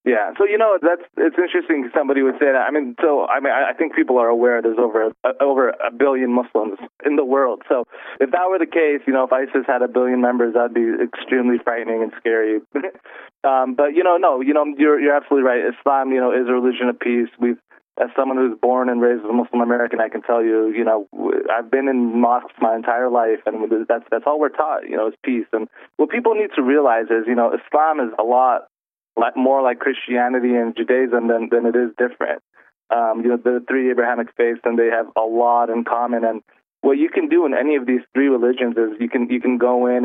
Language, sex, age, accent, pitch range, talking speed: English, male, 20-39, American, 115-135 Hz, 240 wpm